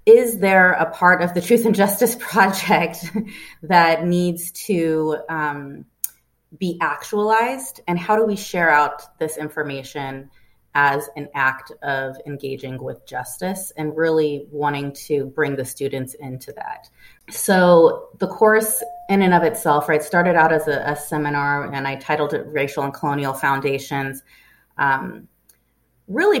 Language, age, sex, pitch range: English, 30-49, female, 140-175 Hz